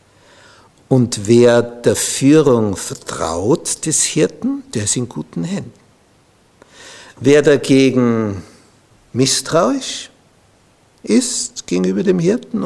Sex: male